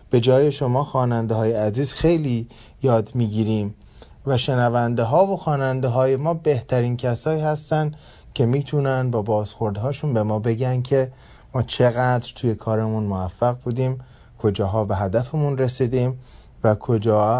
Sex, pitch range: male, 110-145 Hz